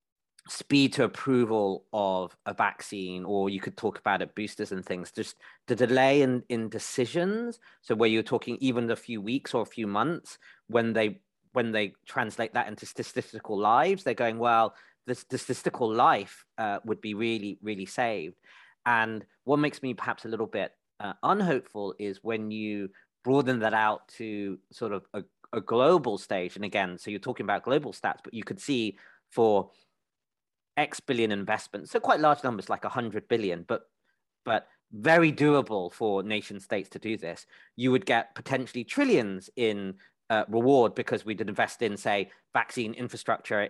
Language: English